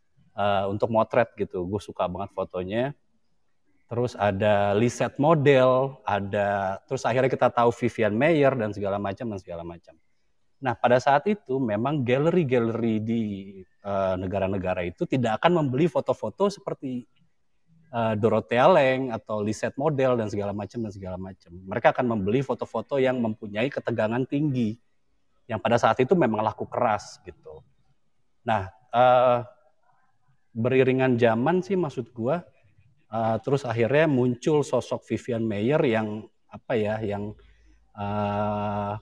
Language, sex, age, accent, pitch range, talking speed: Indonesian, male, 30-49, native, 105-140 Hz, 135 wpm